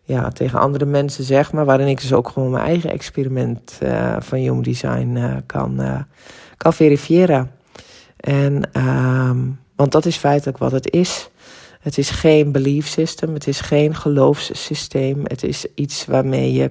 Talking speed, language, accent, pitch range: 165 wpm, Dutch, Dutch, 120-145 Hz